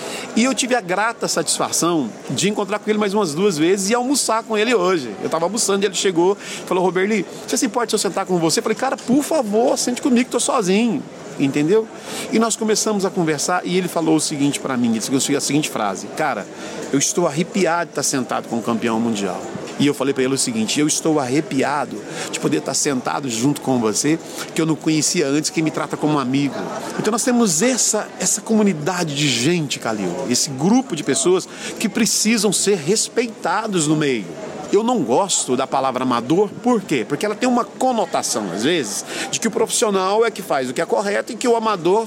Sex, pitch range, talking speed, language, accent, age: male, 155-235 Hz, 220 wpm, Portuguese, Brazilian, 40-59